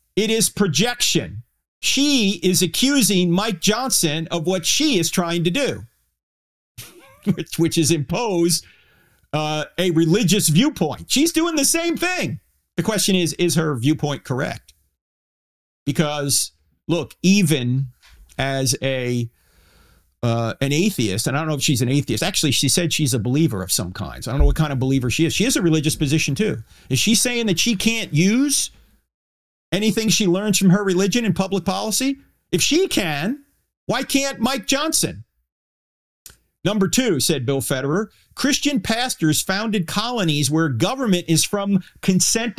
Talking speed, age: 155 wpm, 50-69